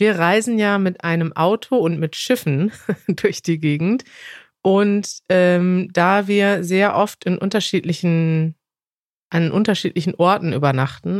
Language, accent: German, German